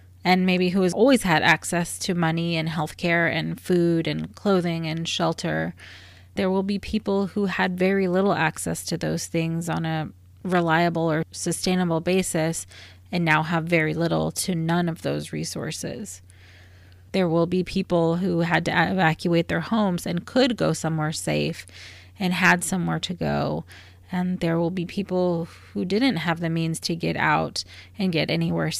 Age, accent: 30-49, American